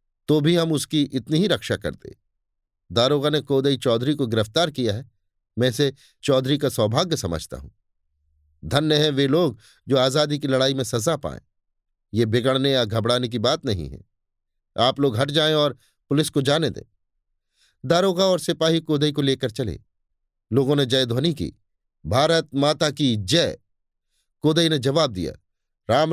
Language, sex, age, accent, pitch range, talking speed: Hindi, male, 50-69, native, 100-150 Hz, 170 wpm